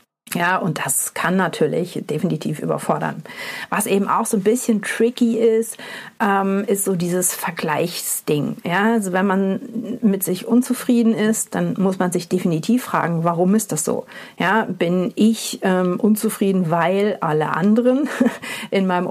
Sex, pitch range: female, 185-225 Hz